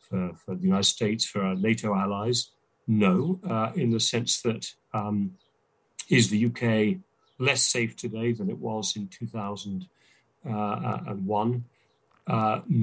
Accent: British